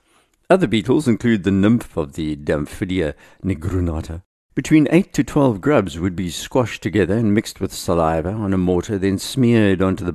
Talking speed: 170 wpm